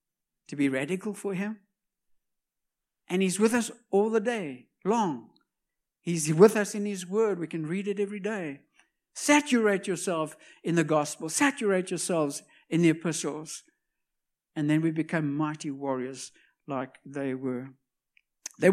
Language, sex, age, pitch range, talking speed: English, male, 60-79, 160-235 Hz, 145 wpm